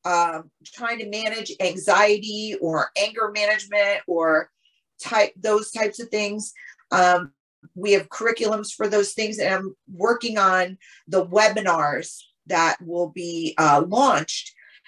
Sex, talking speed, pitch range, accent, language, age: female, 130 wpm, 180-220 Hz, American, English, 40-59